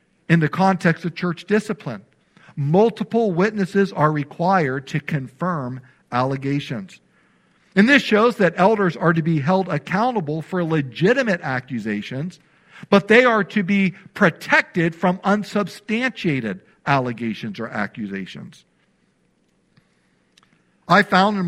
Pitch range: 135-190 Hz